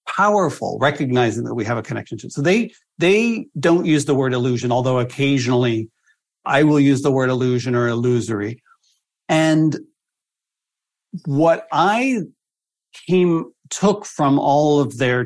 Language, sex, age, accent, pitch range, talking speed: English, male, 50-69, American, 125-150 Hz, 140 wpm